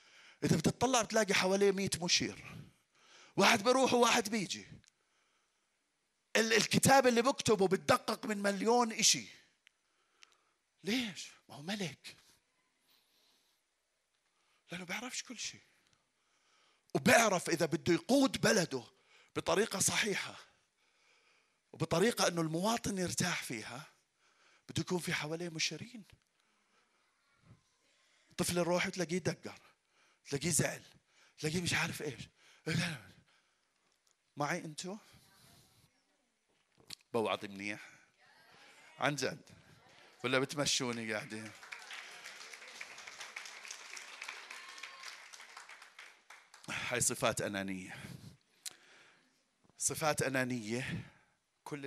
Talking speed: 80 wpm